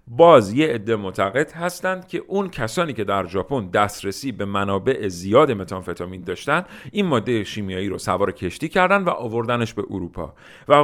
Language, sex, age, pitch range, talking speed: Persian, male, 50-69, 100-140 Hz, 160 wpm